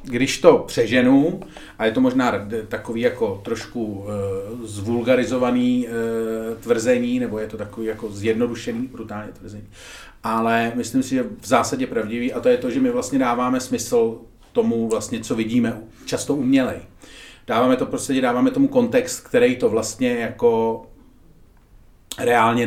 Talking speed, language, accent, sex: 140 wpm, Czech, native, male